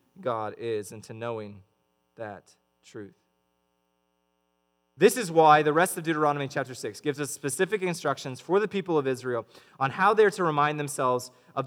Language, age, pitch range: English, 20-39, 100-155 Hz